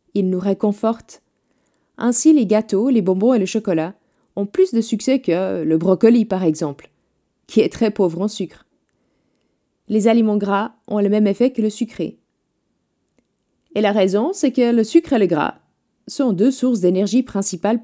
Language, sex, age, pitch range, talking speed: French, female, 30-49, 190-245 Hz, 170 wpm